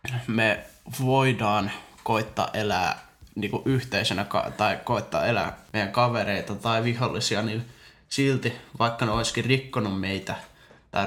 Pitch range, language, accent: 105-125 Hz, Finnish, native